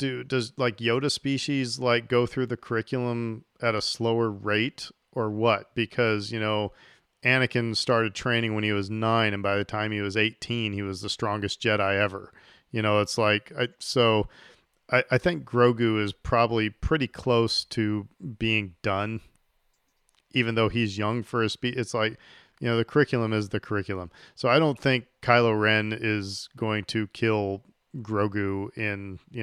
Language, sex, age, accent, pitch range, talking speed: English, male, 40-59, American, 105-120 Hz, 170 wpm